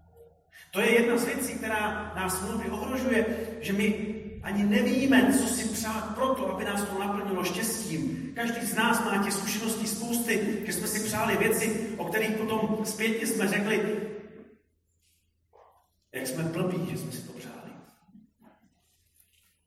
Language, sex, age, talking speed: Slovak, male, 40-59, 145 wpm